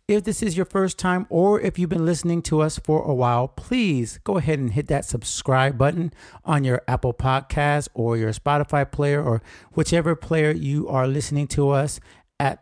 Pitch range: 125-165 Hz